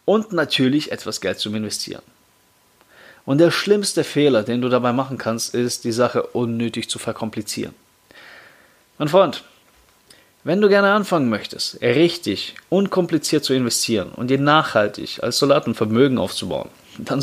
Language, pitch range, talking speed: German, 110-140 Hz, 140 wpm